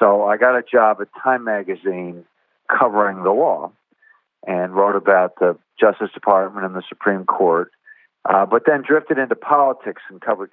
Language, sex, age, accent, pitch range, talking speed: English, male, 50-69, American, 95-125 Hz, 165 wpm